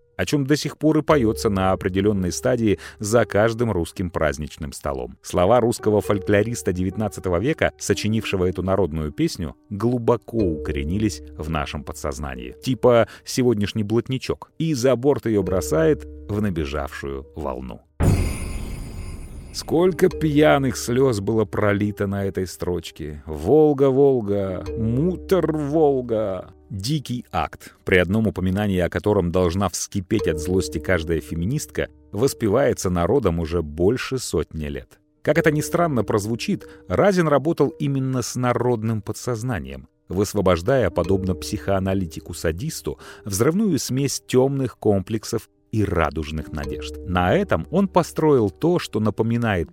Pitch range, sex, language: 85-125 Hz, male, Russian